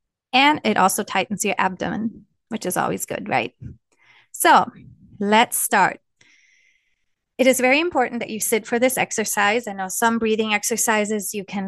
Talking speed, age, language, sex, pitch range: 160 wpm, 30-49, English, female, 195-235 Hz